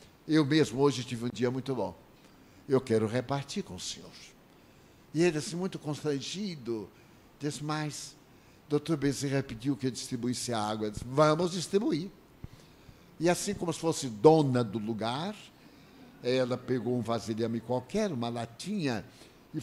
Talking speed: 150 wpm